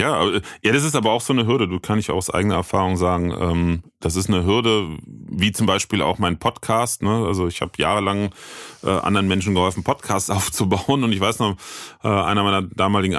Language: German